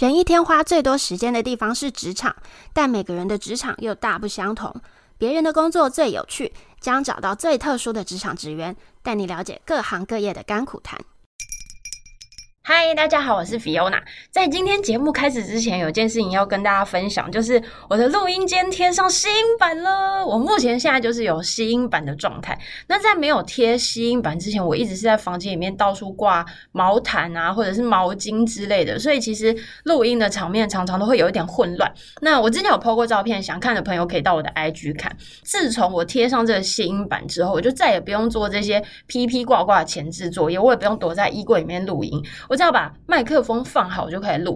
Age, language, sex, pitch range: 20-39, Chinese, female, 190-270 Hz